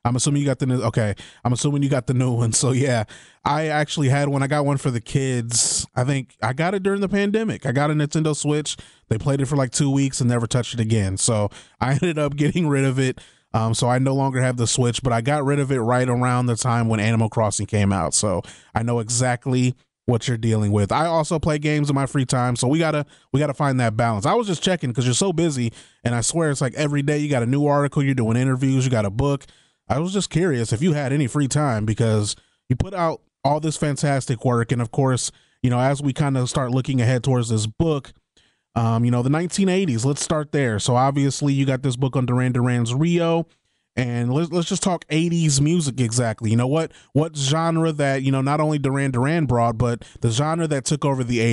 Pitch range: 120-150 Hz